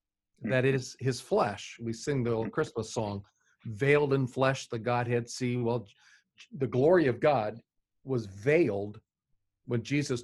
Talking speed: 145 wpm